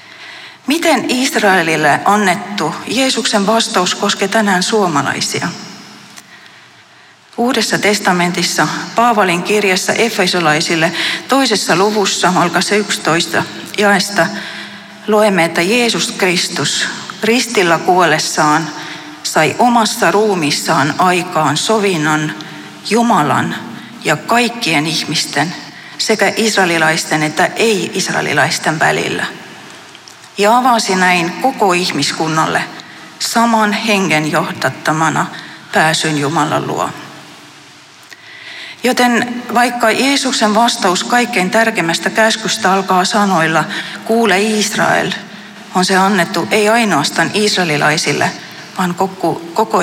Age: 40-59